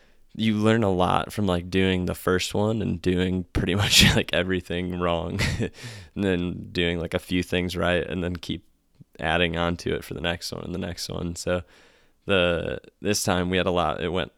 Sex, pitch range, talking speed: male, 85-95 Hz, 210 wpm